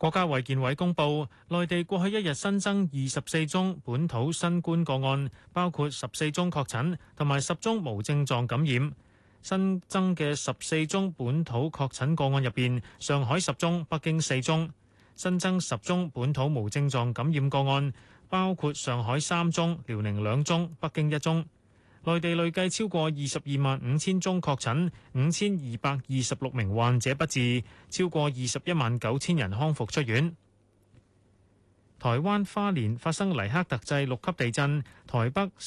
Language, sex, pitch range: Chinese, male, 120-170 Hz